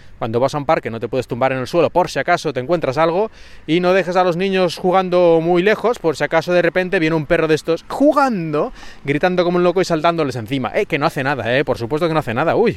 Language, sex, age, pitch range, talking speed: Spanish, male, 20-39, 135-180 Hz, 275 wpm